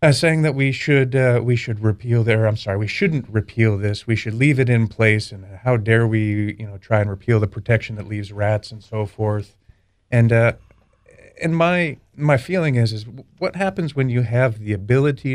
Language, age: English, 40-59